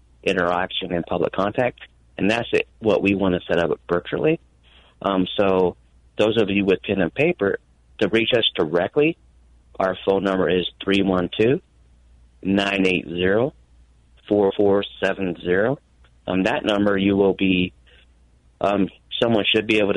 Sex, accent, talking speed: male, American, 125 wpm